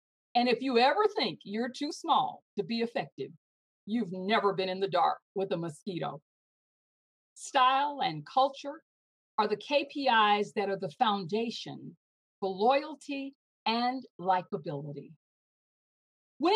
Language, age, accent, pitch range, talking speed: English, 50-69, American, 185-260 Hz, 125 wpm